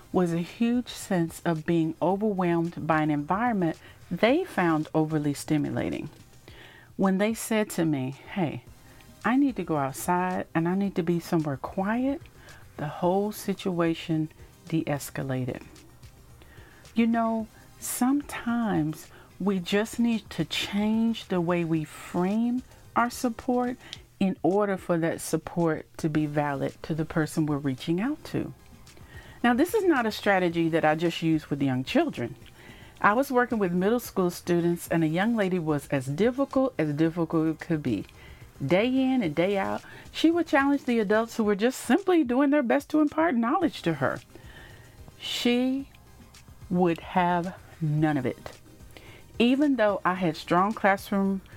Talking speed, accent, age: 150 wpm, American, 50-69